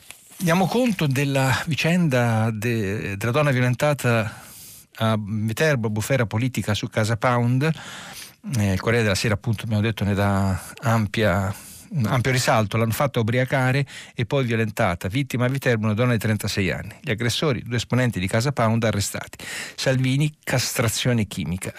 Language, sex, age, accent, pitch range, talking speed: Italian, male, 50-69, native, 105-125 Hz, 150 wpm